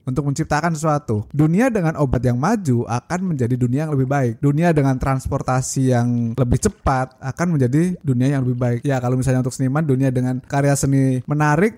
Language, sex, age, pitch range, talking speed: Indonesian, male, 20-39, 130-165 Hz, 185 wpm